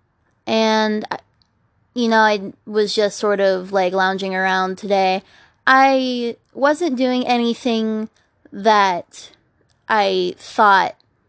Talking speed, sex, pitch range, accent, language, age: 100 wpm, female, 195-230 Hz, American, English, 20-39